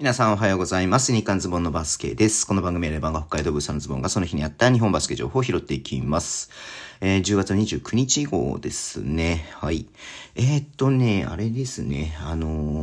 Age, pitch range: 40-59, 85-125 Hz